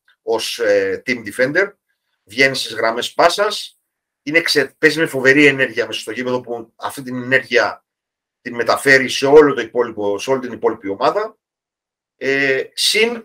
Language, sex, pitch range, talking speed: Greek, male, 130-185 Hz, 140 wpm